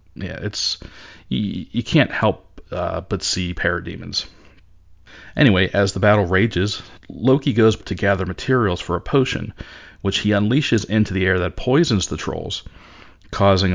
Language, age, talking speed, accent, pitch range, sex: English, 40-59, 150 wpm, American, 90-110 Hz, male